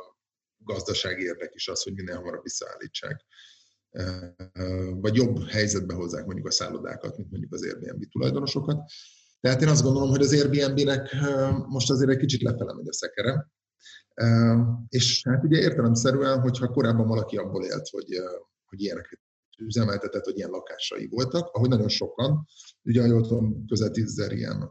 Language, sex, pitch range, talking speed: Hungarian, male, 110-140 Hz, 150 wpm